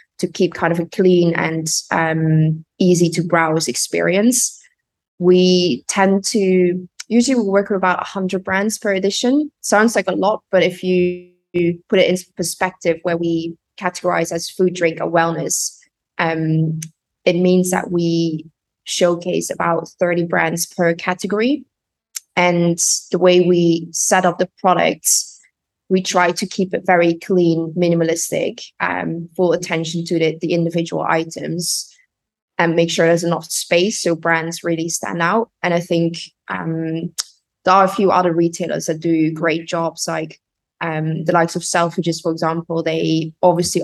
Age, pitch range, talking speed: 20-39, 165-180 Hz, 155 wpm